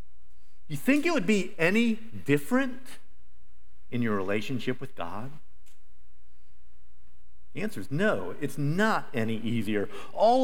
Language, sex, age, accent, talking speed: English, male, 50-69, American, 120 wpm